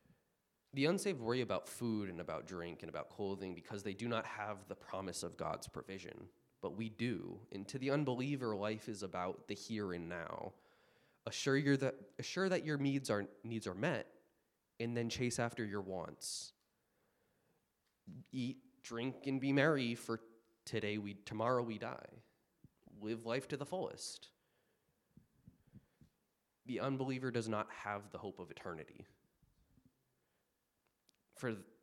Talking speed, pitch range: 145 wpm, 100-135 Hz